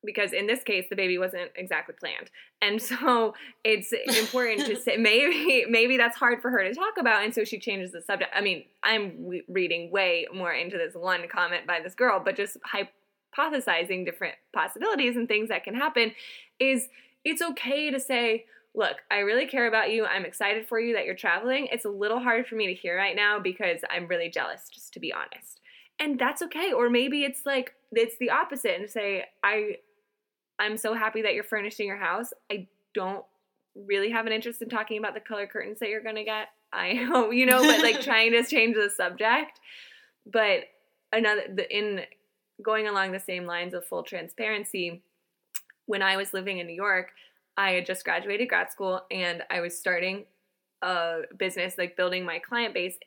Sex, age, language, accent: female, 20-39, English, American